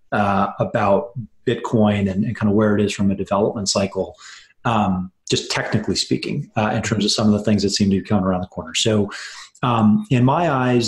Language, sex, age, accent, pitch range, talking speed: English, male, 30-49, American, 100-115 Hz, 215 wpm